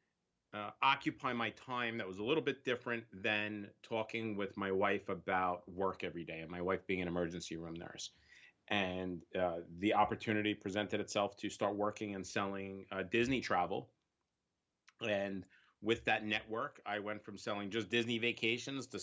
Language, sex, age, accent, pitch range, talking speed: English, male, 30-49, American, 100-120 Hz, 165 wpm